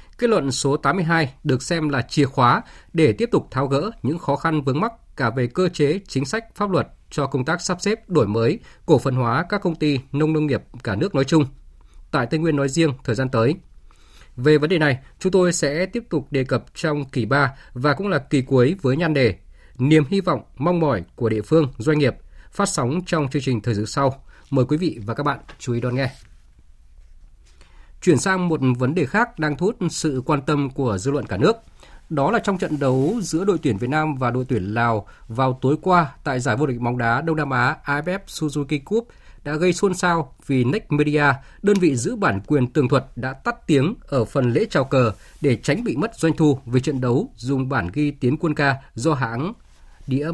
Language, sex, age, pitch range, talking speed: Vietnamese, male, 20-39, 125-165 Hz, 230 wpm